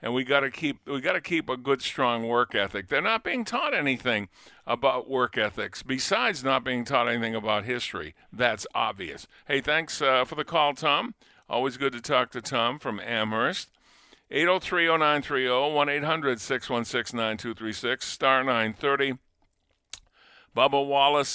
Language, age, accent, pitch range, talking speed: English, 50-69, American, 110-135 Hz, 135 wpm